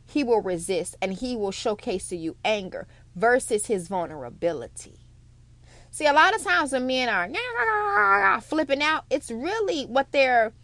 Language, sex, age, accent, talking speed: English, female, 30-49, American, 150 wpm